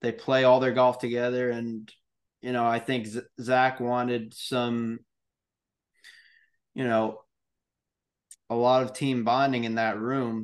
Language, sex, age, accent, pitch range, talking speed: English, male, 20-39, American, 120-145 Hz, 140 wpm